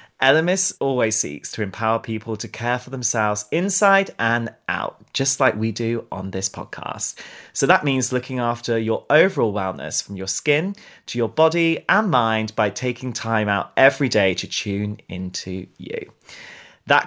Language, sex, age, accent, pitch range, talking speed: English, male, 30-49, British, 110-150 Hz, 165 wpm